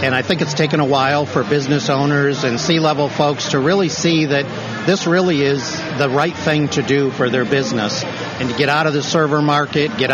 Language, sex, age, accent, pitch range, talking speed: English, male, 50-69, American, 130-150 Hz, 220 wpm